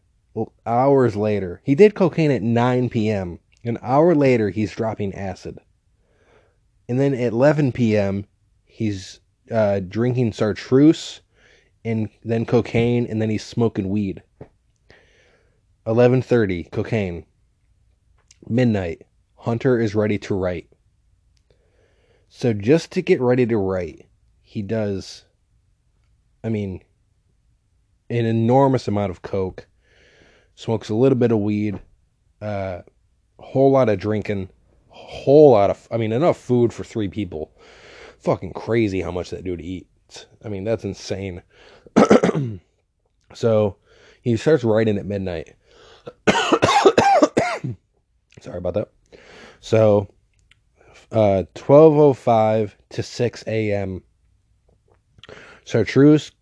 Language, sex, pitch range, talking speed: English, male, 100-120 Hz, 115 wpm